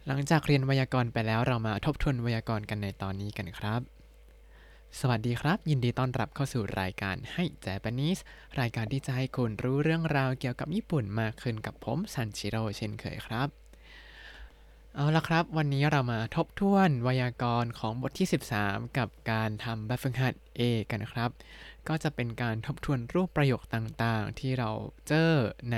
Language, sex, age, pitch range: Thai, male, 20-39, 115-160 Hz